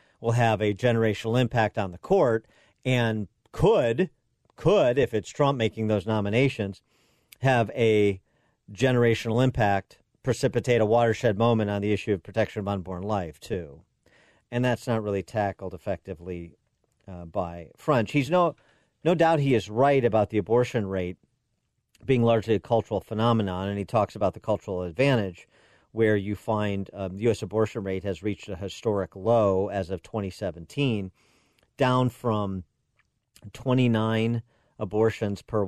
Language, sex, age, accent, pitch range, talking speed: English, male, 40-59, American, 95-120 Hz, 145 wpm